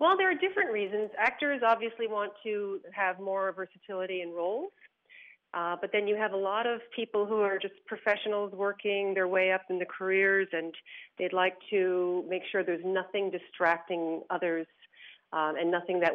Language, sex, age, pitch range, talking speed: English, female, 40-59, 175-215 Hz, 180 wpm